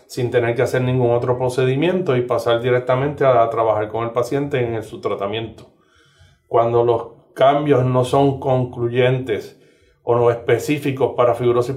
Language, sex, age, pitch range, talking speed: Spanish, male, 30-49, 120-140 Hz, 155 wpm